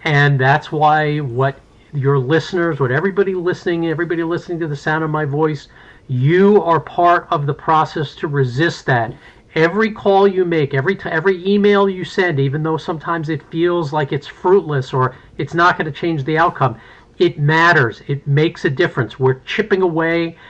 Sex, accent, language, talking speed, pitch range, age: male, American, English, 180 wpm, 140-175 Hz, 50-69